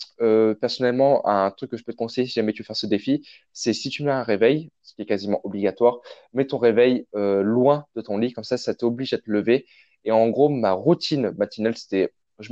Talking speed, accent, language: 240 wpm, French, French